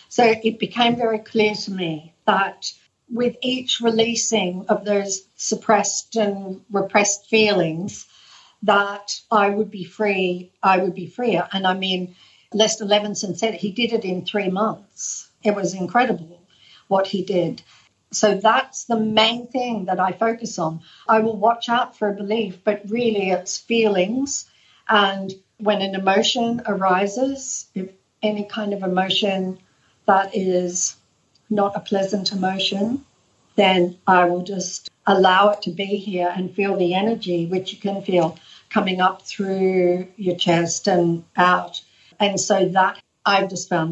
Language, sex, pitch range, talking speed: English, female, 180-215 Hz, 150 wpm